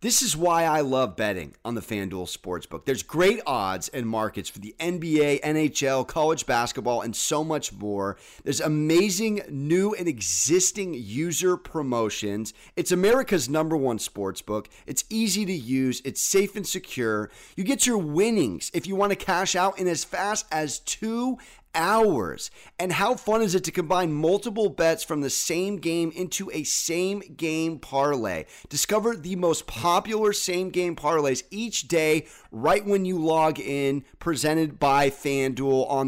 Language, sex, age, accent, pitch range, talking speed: English, male, 30-49, American, 140-190 Hz, 160 wpm